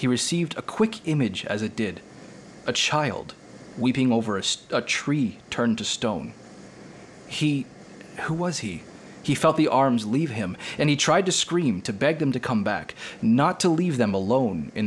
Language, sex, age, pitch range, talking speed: English, male, 30-49, 110-145 Hz, 180 wpm